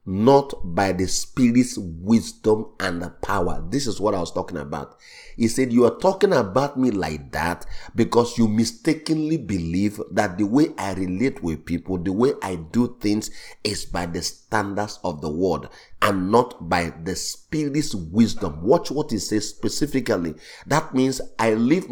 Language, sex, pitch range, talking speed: English, male, 95-130 Hz, 170 wpm